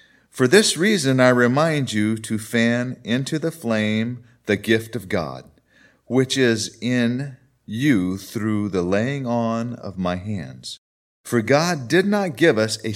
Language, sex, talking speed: English, male, 155 wpm